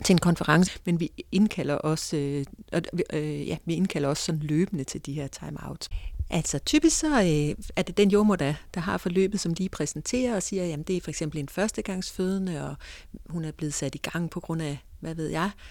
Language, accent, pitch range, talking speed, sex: Danish, native, 150-195 Hz, 220 wpm, female